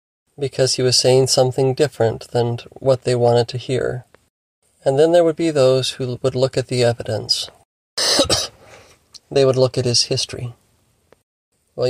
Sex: male